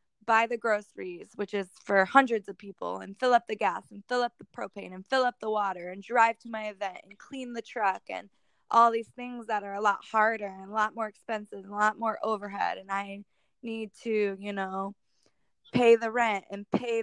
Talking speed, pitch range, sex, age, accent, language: 220 wpm, 200-230 Hz, female, 20-39, American, English